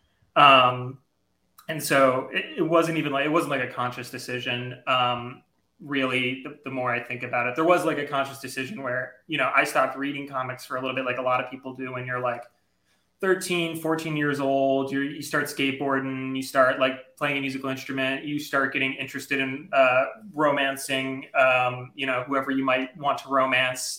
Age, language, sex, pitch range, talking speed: 30-49, English, male, 125-140 Hz, 200 wpm